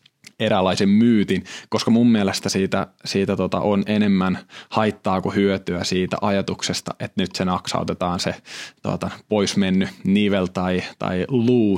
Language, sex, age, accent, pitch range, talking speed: Finnish, male, 20-39, native, 95-115 Hz, 130 wpm